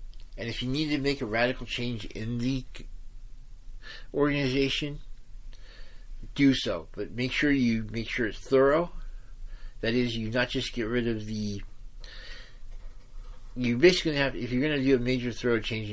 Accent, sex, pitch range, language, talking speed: American, male, 110-130 Hz, English, 160 wpm